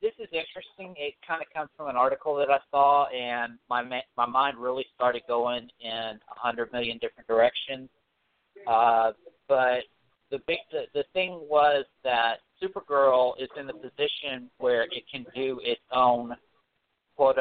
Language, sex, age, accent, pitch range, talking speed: English, male, 50-69, American, 125-170 Hz, 160 wpm